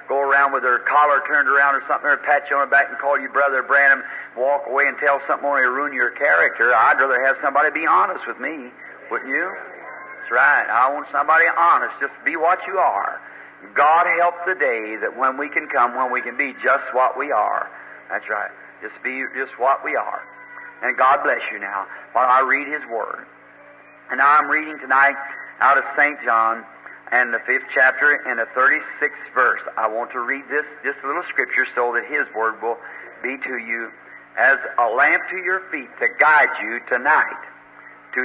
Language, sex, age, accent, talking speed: English, male, 50-69, American, 200 wpm